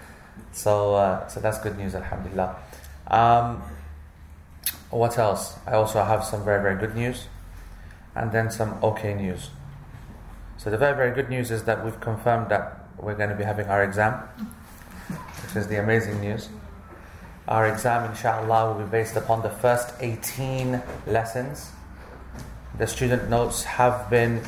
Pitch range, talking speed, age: 100-115 Hz, 150 wpm, 30-49